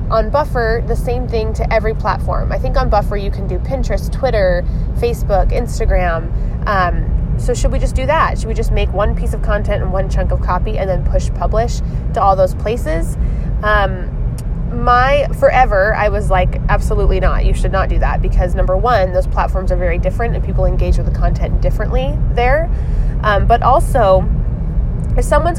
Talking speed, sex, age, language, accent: 190 wpm, female, 20-39, English, American